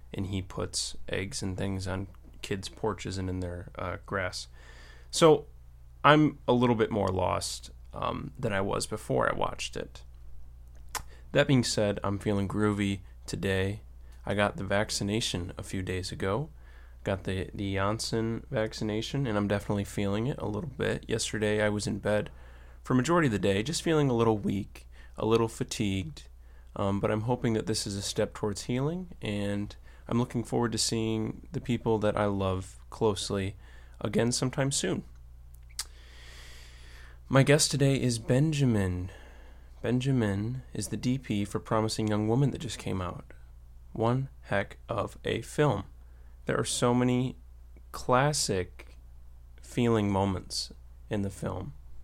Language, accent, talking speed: English, American, 155 wpm